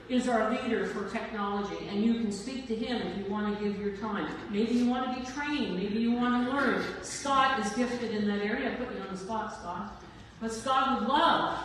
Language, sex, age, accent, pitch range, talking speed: English, female, 50-69, American, 195-250 Hz, 235 wpm